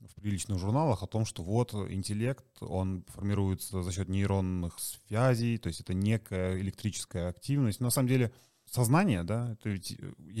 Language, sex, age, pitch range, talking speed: Russian, male, 20-39, 95-115 Hz, 155 wpm